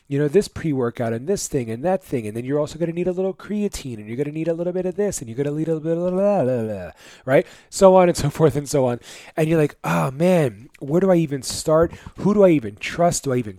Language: English